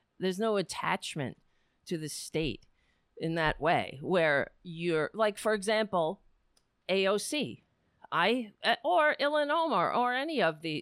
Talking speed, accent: 130 wpm, American